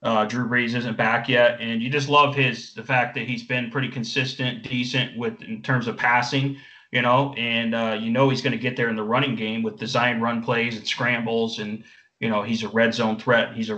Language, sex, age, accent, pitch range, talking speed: English, male, 30-49, American, 115-130 Hz, 240 wpm